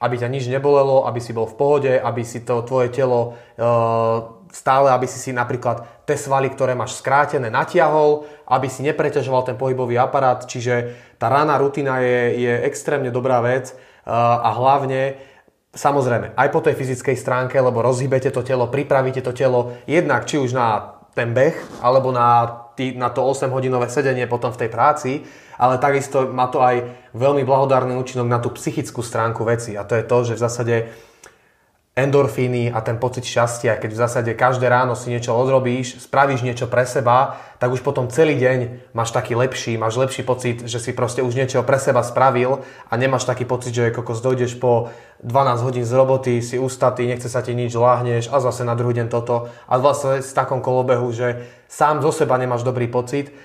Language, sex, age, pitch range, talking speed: Slovak, male, 20-39, 120-135 Hz, 190 wpm